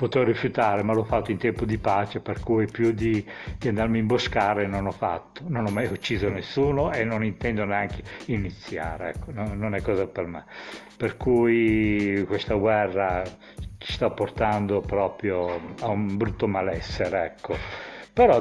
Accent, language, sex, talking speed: native, Italian, male, 165 wpm